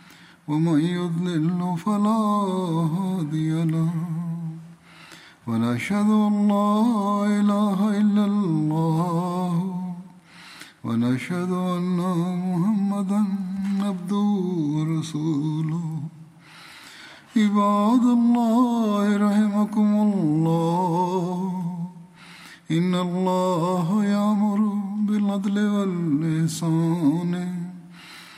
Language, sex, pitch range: Urdu, male, 160-205 Hz